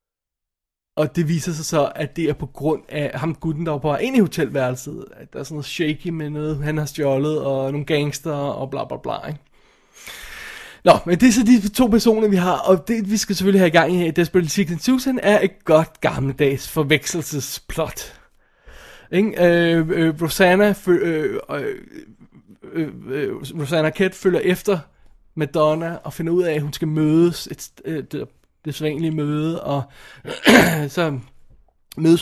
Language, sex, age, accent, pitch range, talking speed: Danish, male, 20-39, native, 150-185 Hz, 175 wpm